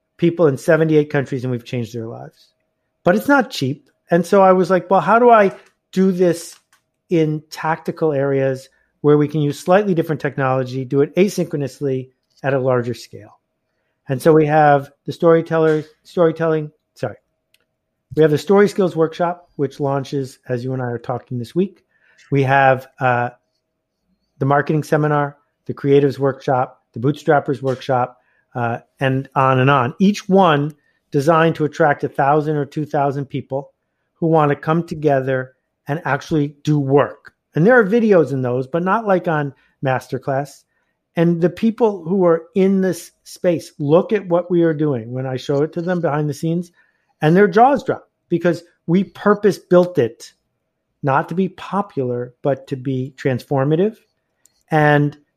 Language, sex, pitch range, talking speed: English, male, 135-175 Hz, 165 wpm